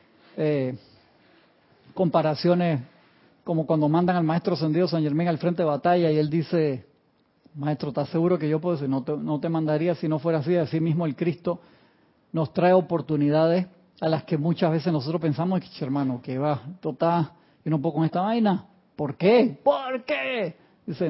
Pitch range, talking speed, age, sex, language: 150-180 Hz, 180 wpm, 40-59, male, Spanish